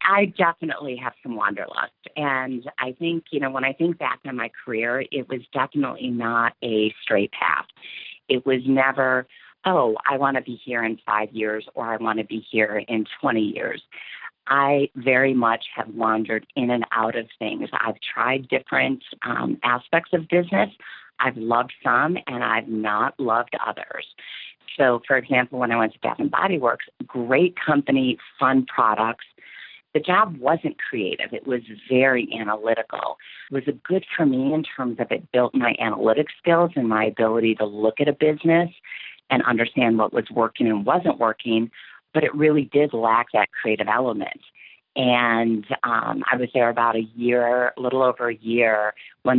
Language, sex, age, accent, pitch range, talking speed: English, female, 40-59, American, 115-140 Hz, 175 wpm